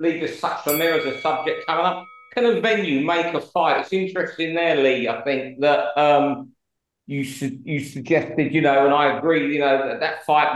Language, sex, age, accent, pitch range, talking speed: English, male, 50-69, British, 135-175 Hz, 215 wpm